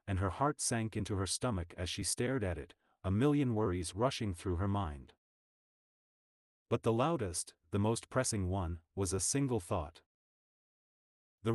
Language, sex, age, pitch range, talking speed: English, male, 40-59, 90-120 Hz, 160 wpm